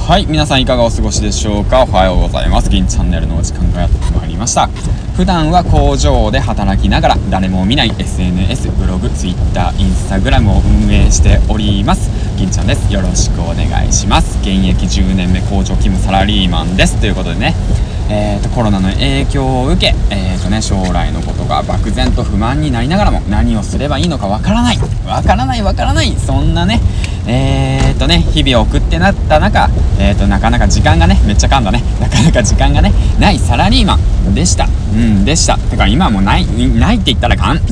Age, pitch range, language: 20-39, 90-100 Hz, Japanese